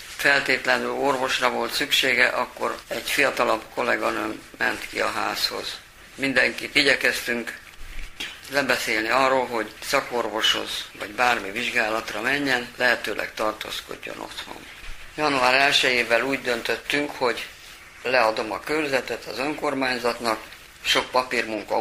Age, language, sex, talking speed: 50-69, Hungarian, female, 100 wpm